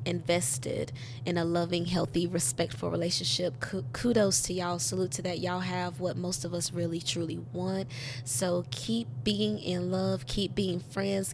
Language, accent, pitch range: English, American, 120-180 Hz